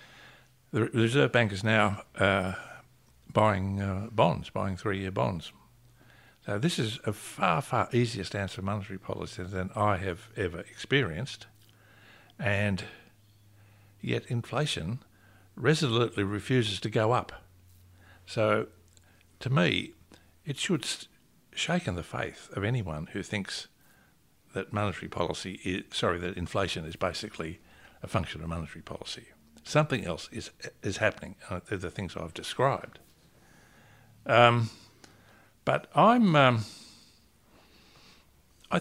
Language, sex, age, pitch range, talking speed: English, male, 60-79, 95-120 Hz, 115 wpm